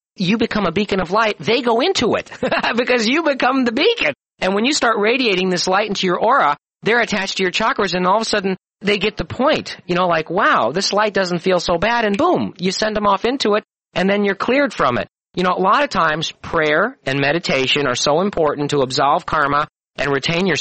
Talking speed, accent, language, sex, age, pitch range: 235 wpm, American, English, male, 40-59, 150-210 Hz